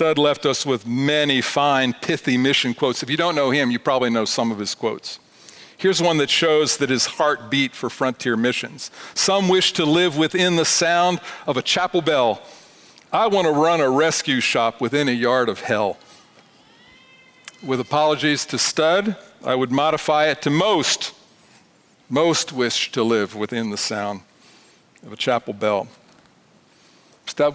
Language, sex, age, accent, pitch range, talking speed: English, male, 50-69, American, 130-175 Hz, 165 wpm